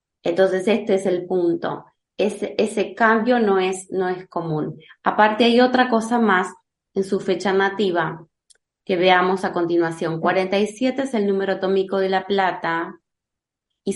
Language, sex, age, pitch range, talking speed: Spanish, female, 20-39, 180-210 Hz, 145 wpm